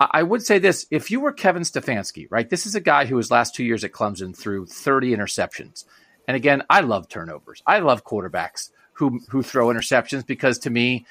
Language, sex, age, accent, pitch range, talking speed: English, male, 40-59, American, 125-190 Hz, 210 wpm